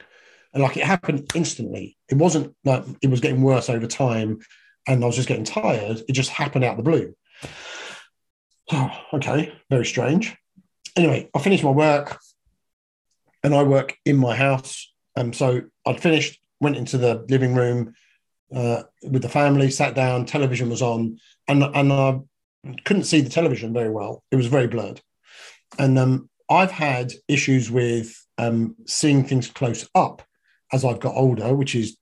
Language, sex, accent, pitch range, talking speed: English, male, British, 120-145 Hz, 165 wpm